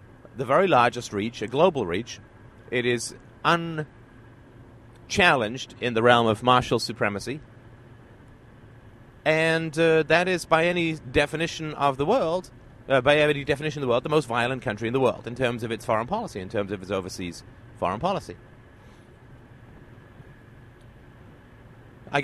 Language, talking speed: English, 145 wpm